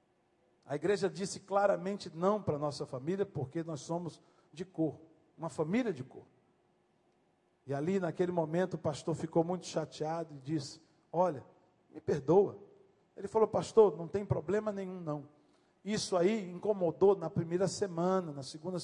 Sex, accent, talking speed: male, Brazilian, 155 wpm